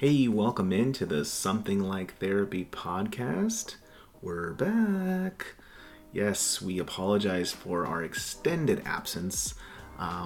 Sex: male